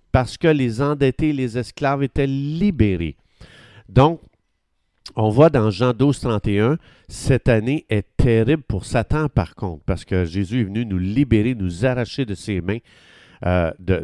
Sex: male